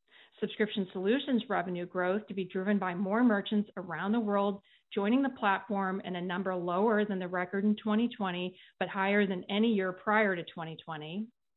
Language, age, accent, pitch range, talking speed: English, 40-59, American, 185-215 Hz, 170 wpm